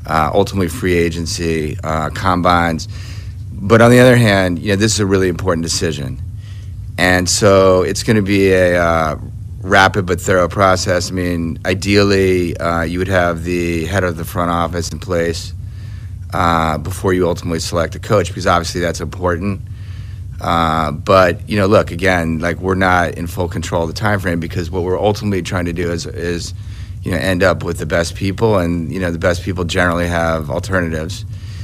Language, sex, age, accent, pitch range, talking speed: English, male, 30-49, American, 90-100 Hz, 190 wpm